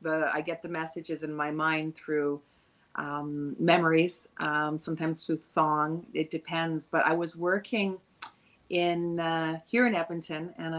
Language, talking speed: English, 150 wpm